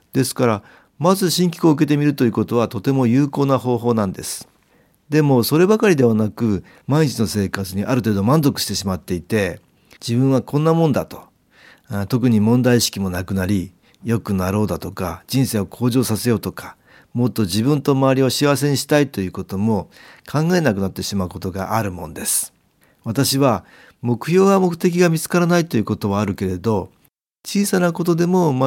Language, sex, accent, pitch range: Japanese, male, native, 100-140 Hz